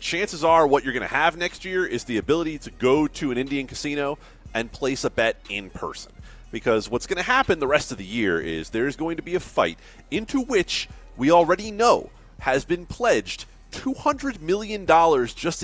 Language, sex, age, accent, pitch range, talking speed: English, male, 30-49, American, 125-180 Hz, 200 wpm